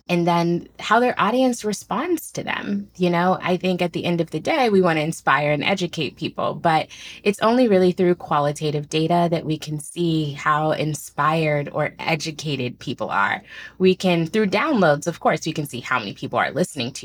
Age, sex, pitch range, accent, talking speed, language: 20-39, female, 145-175 Hz, American, 200 wpm, English